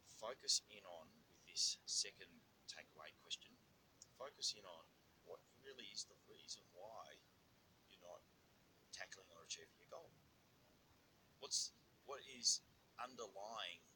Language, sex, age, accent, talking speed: English, male, 30-49, Australian, 120 wpm